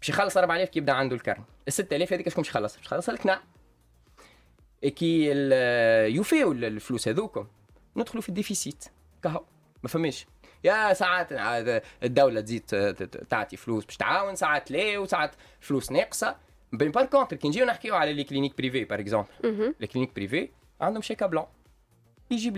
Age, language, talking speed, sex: 20-39, Arabic, 150 wpm, male